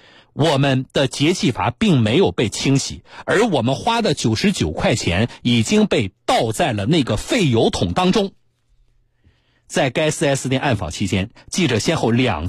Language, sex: Chinese, male